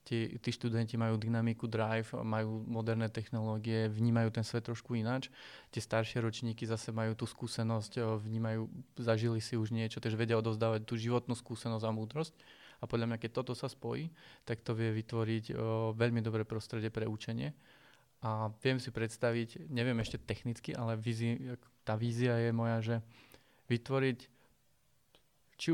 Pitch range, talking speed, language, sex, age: 110-120 Hz, 155 wpm, Slovak, male, 20-39